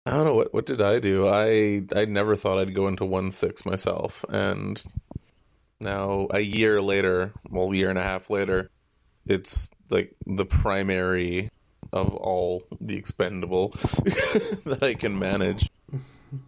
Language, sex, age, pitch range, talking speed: English, male, 20-39, 95-105 Hz, 155 wpm